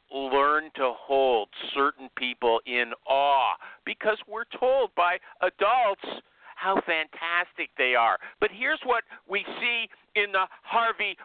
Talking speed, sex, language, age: 130 wpm, male, English, 50-69